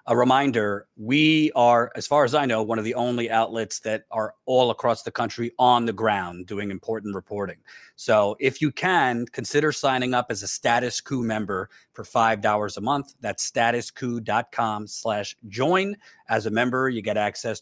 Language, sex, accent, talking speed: English, male, American, 175 wpm